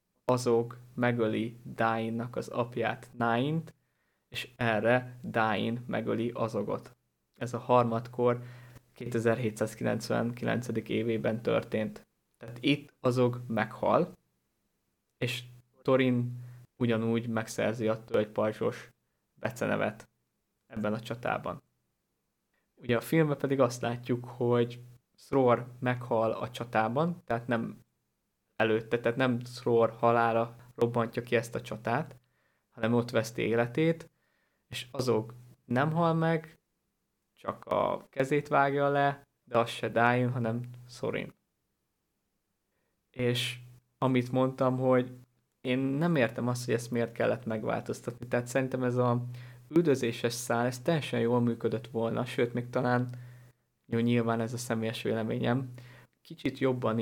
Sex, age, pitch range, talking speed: male, 20-39, 115-125 Hz, 115 wpm